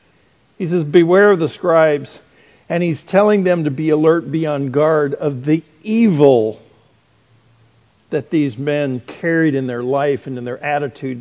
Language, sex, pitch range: English, male, 140-175 Hz